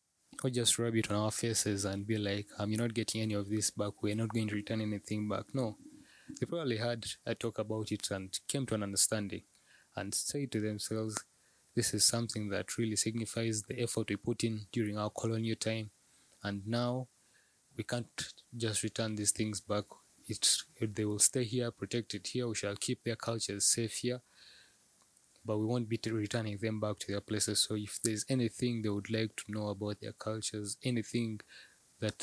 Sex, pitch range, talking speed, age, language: male, 105-115 Hz, 195 wpm, 20-39, English